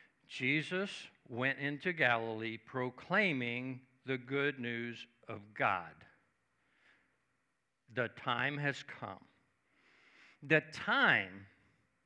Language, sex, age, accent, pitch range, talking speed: English, male, 60-79, American, 130-170 Hz, 80 wpm